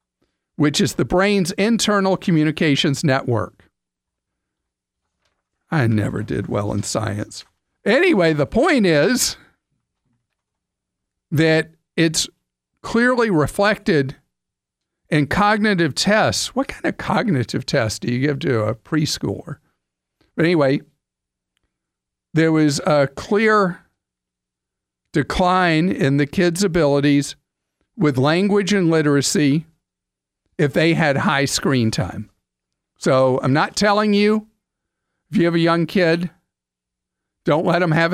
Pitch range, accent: 130-175 Hz, American